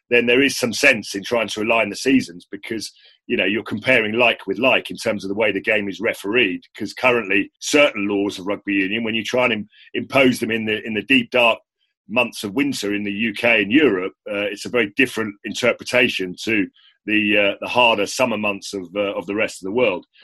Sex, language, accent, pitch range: male, English, British, 105-120 Hz